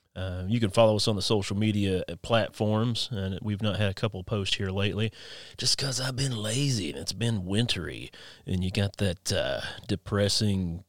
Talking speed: 195 wpm